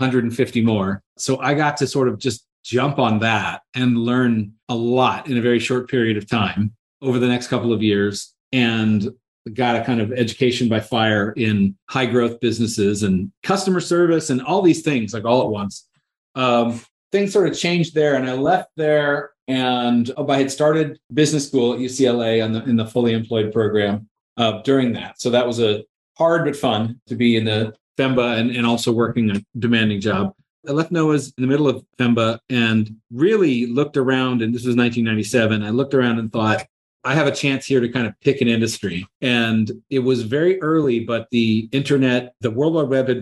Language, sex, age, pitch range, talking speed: English, male, 40-59, 110-135 Hz, 200 wpm